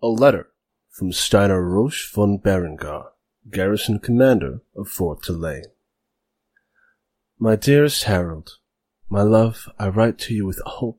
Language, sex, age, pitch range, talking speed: English, male, 20-39, 85-105 Hz, 125 wpm